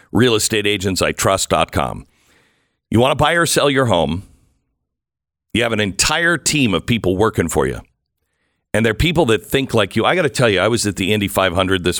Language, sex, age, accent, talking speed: English, male, 50-69, American, 210 wpm